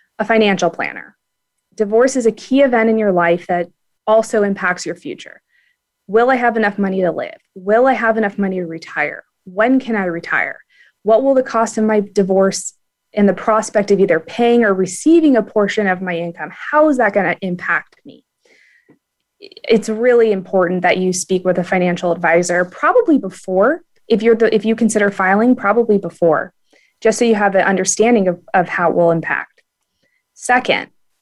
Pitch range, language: 185-240 Hz, English